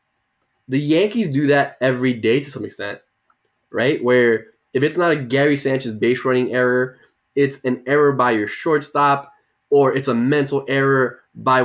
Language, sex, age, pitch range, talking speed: English, male, 10-29, 115-145 Hz, 165 wpm